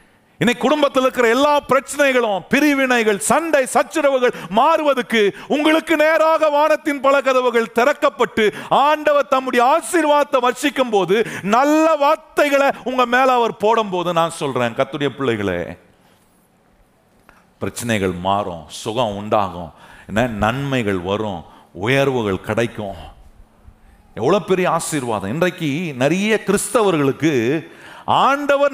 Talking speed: 85 wpm